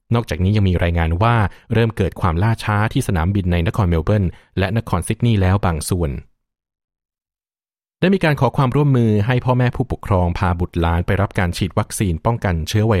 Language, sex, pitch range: Thai, male, 90-110 Hz